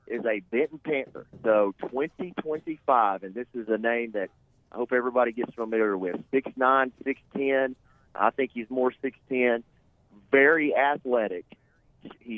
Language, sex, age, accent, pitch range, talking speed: English, male, 40-59, American, 110-130 Hz, 145 wpm